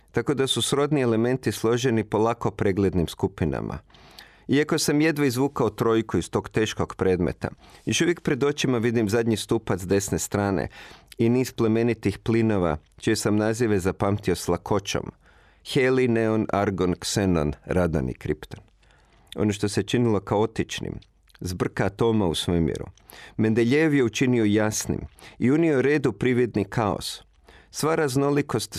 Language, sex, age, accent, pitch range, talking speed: Croatian, male, 40-59, native, 100-125 Hz, 135 wpm